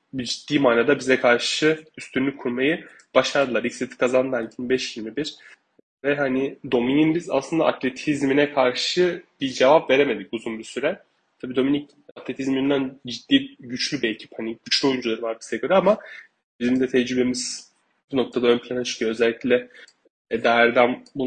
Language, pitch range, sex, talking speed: Turkish, 125-140 Hz, male, 135 wpm